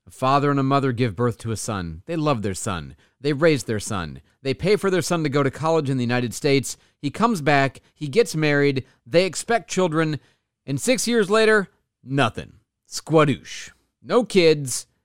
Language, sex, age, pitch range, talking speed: English, male, 40-59, 115-180 Hz, 190 wpm